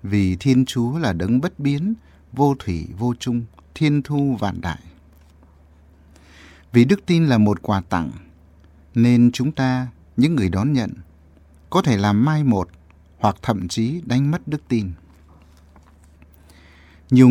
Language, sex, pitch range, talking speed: Vietnamese, male, 80-130 Hz, 145 wpm